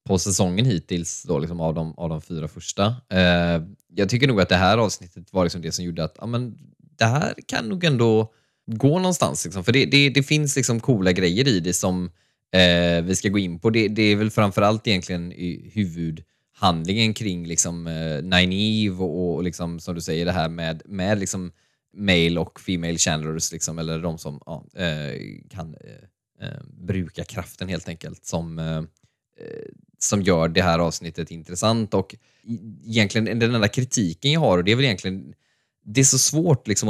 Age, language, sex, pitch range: 20-39, Swedish, male, 85-110 Hz